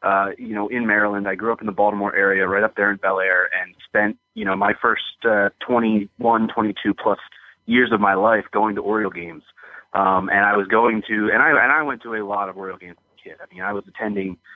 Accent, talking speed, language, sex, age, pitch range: American, 250 wpm, English, male, 20-39, 100-130 Hz